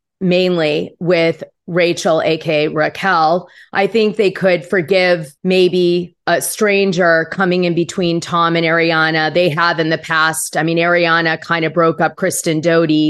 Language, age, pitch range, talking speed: English, 30-49, 165-200 Hz, 150 wpm